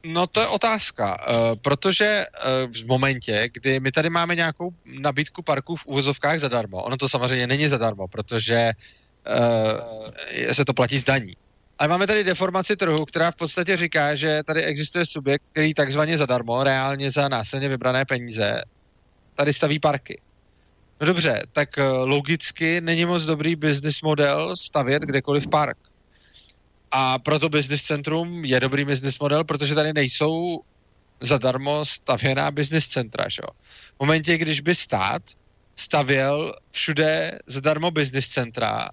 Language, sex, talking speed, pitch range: Slovak, male, 140 wpm, 125-155 Hz